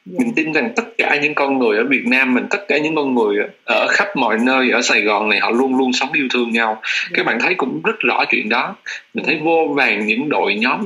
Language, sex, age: Vietnamese, male, 20-39